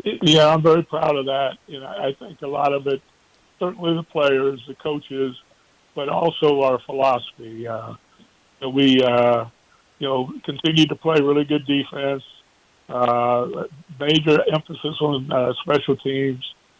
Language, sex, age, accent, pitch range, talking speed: English, male, 60-79, American, 130-155 Hz, 150 wpm